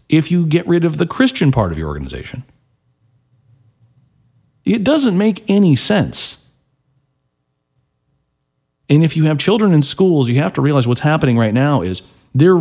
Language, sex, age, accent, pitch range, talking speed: English, male, 40-59, American, 85-140 Hz, 155 wpm